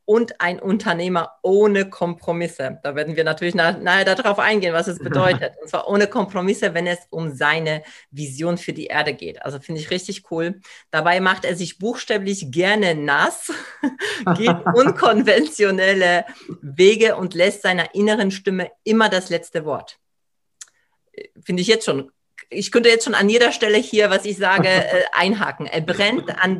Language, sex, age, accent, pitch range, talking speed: German, female, 40-59, German, 165-205 Hz, 160 wpm